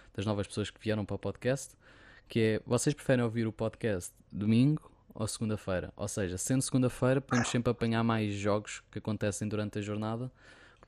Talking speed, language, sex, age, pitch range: 180 wpm, Portuguese, male, 20-39, 105-120 Hz